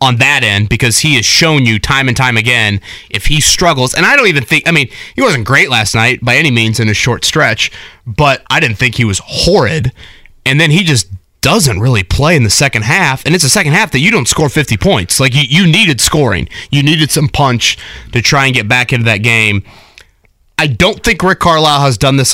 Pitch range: 110-150 Hz